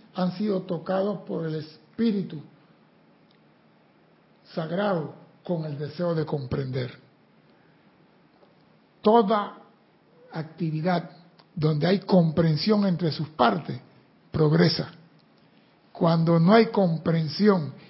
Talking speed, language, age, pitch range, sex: 85 wpm, Spanish, 60-79, 160-205 Hz, male